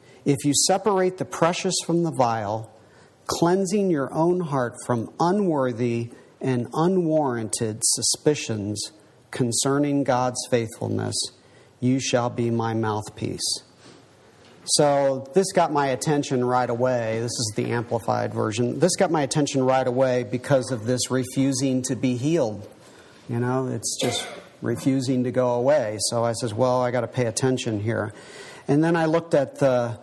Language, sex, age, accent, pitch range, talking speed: English, male, 40-59, American, 125-145 Hz, 150 wpm